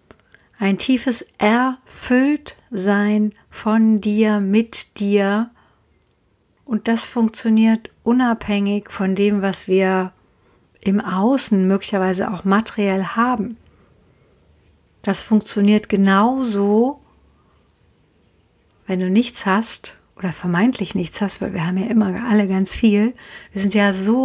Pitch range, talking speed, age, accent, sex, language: 190-225 Hz, 110 wpm, 60-79, German, female, German